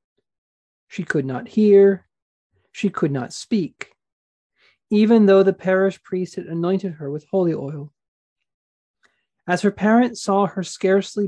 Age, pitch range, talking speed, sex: 40-59, 150-200 Hz, 135 wpm, male